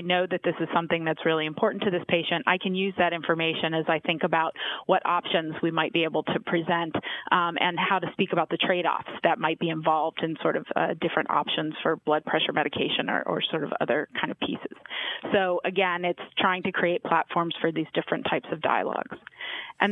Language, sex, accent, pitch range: English, female, American, 170-195 Hz